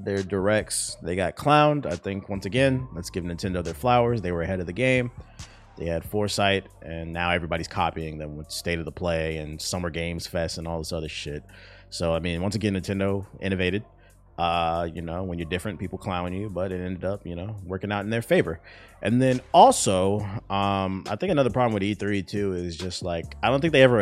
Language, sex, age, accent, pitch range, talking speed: English, male, 30-49, American, 90-110 Hz, 220 wpm